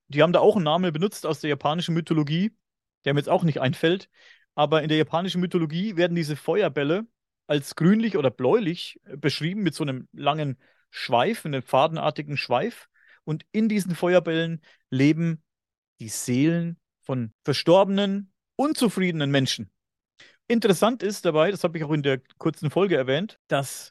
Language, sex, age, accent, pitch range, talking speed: German, male, 40-59, German, 140-180 Hz, 155 wpm